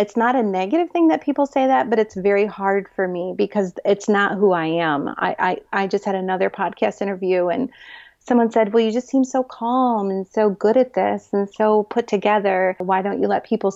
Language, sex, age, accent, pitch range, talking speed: English, female, 30-49, American, 185-230 Hz, 225 wpm